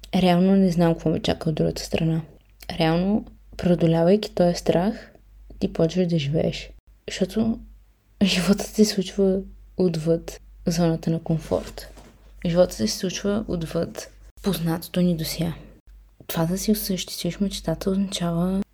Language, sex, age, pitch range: Bulgarian, female, 20-39, 165-195 Hz